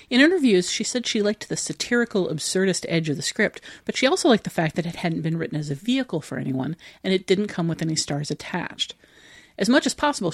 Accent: American